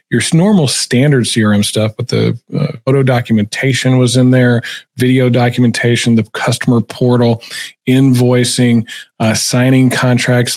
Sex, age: male, 40-59